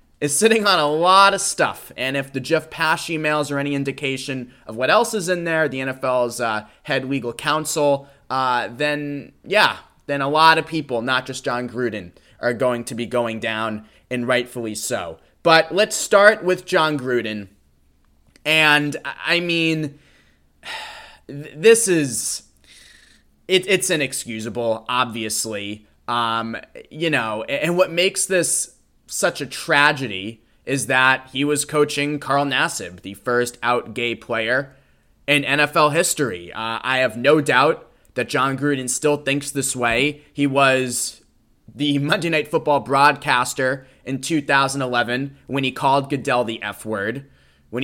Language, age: English, 20-39